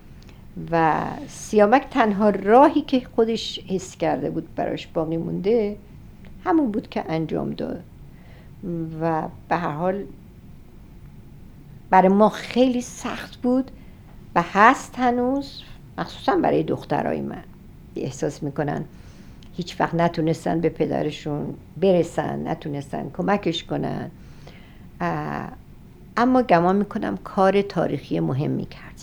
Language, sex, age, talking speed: English, female, 60-79, 105 wpm